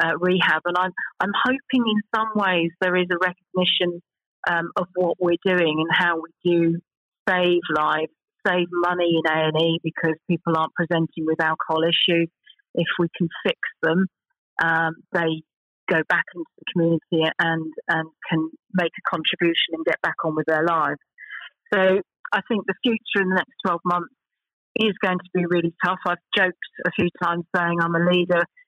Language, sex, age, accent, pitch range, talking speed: English, female, 40-59, British, 165-185 Hz, 180 wpm